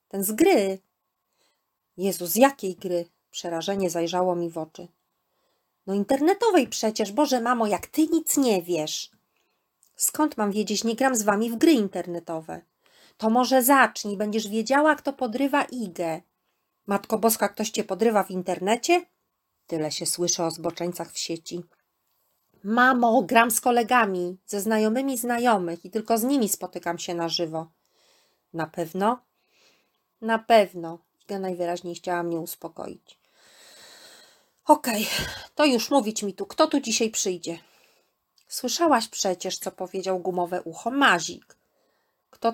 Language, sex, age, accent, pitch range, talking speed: Polish, female, 40-59, native, 180-250 Hz, 135 wpm